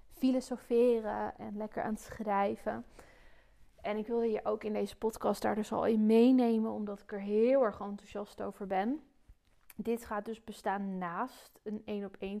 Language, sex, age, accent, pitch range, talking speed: Dutch, female, 20-39, Dutch, 200-225 Hz, 170 wpm